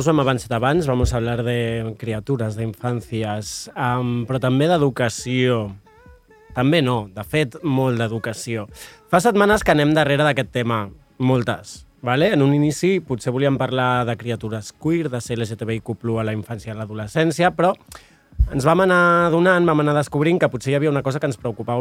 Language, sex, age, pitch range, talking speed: Spanish, male, 30-49, 120-155 Hz, 180 wpm